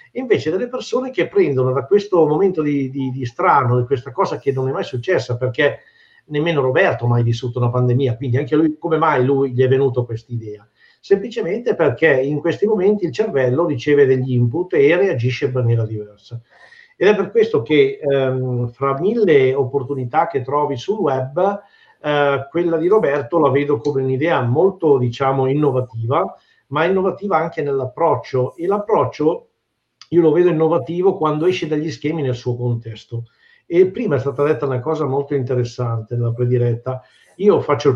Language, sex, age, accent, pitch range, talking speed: Italian, male, 50-69, native, 130-170 Hz, 170 wpm